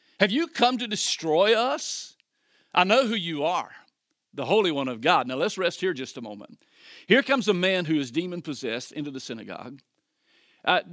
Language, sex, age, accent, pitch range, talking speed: English, male, 50-69, American, 150-230 Hz, 185 wpm